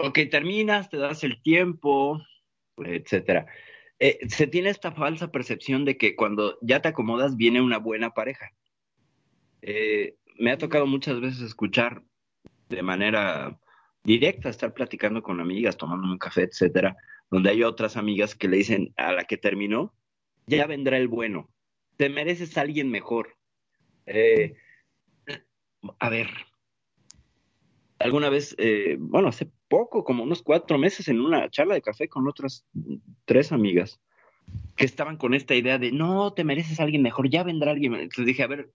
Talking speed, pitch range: 160 wpm, 110-155 Hz